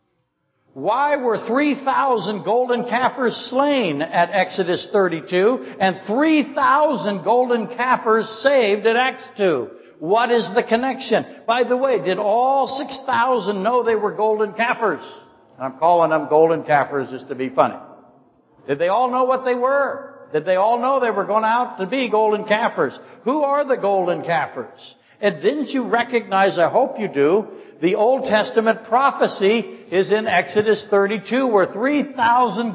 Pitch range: 190-250 Hz